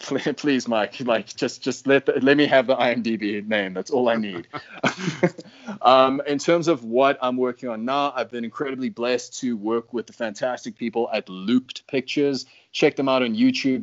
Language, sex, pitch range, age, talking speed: English, male, 115-150 Hz, 20-39, 190 wpm